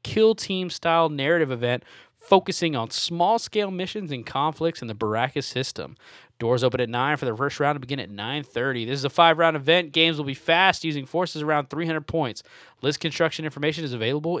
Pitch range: 120-150 Hz